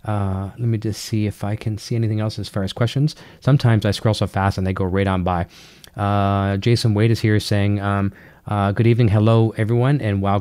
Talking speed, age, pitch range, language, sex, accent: 230 wpm, 30-49, 100-120 Hz, English, male, American